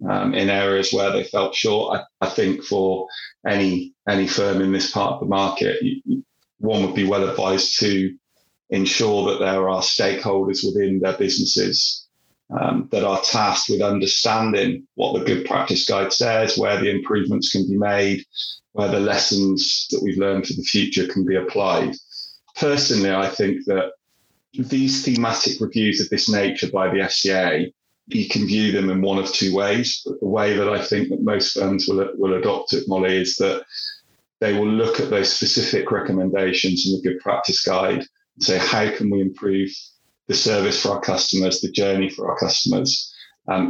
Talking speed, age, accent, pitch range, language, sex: 180 wpm, 30-49, British, 95-110 Hz, English, male